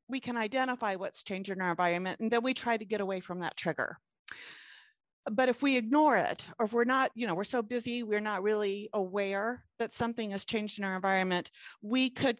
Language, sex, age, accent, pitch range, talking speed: English, female, 50-69, American, 200-245 Hz, 220 wpm